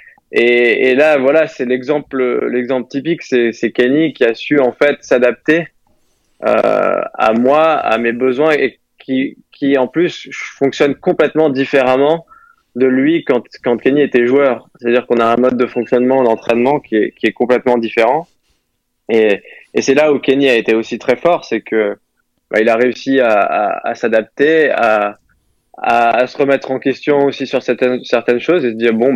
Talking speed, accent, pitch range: 185 wpm, French, 115-135 Hz